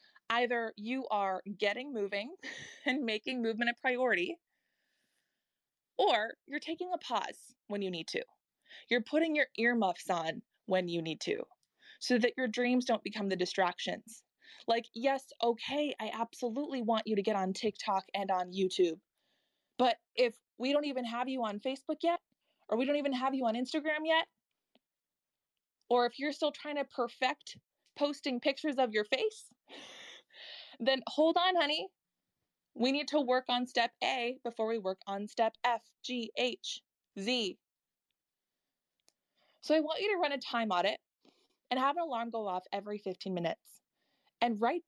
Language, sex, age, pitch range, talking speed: English, female, 20-39, 210-285 Hz, 160 wpm